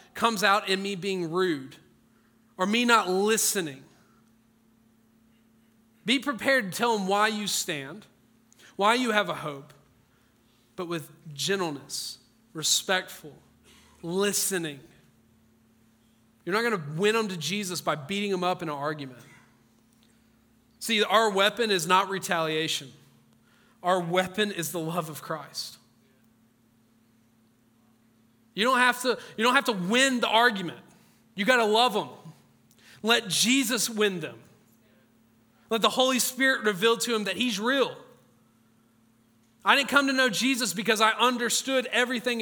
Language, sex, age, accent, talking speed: English, male, 40-59, American, 135 wpm